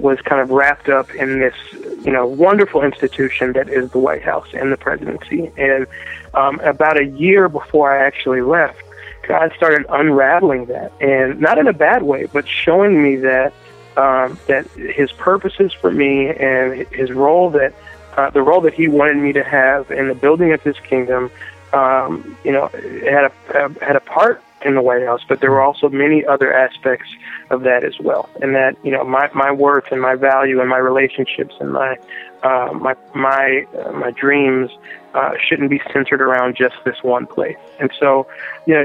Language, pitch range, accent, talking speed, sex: English, 130-145 Hz, American, 190 wpm, male